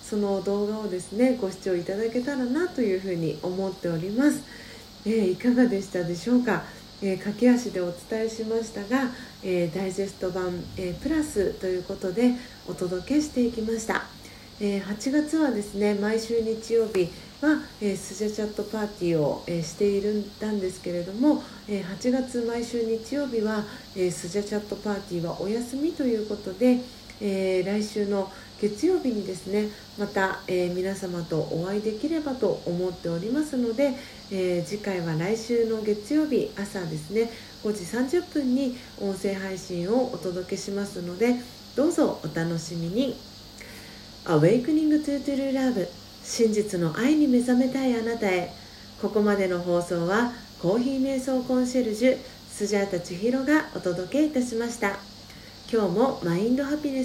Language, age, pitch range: Japanese, 40-59, 190-250 Hz